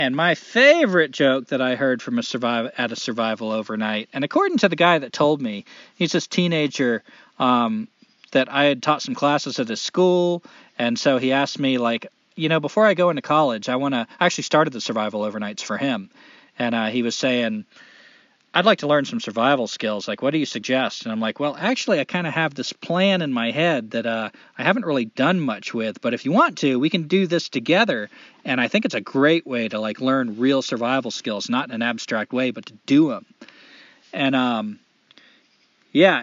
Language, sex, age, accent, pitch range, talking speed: English, male, 40-59, American, 120-175 Hz, 225 wpm